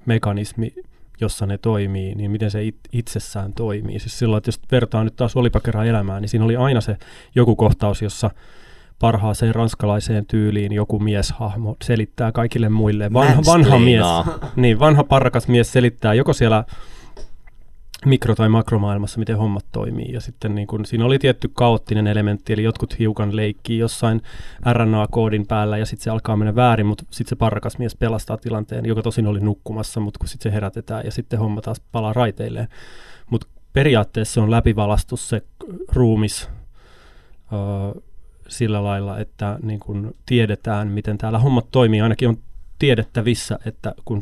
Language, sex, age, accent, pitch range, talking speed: Finnish, male, 20-39, native, 105-120 Hz, 160 wpm